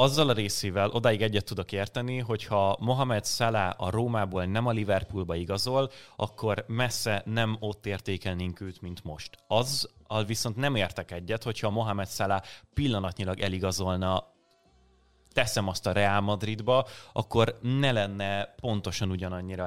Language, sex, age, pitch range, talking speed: Hungarian, male, 30-49, 95-115 Hz, 135 wpm